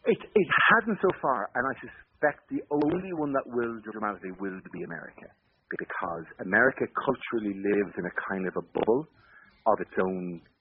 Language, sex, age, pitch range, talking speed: English, male, 40-59, 95-120 Hz, 170 wpm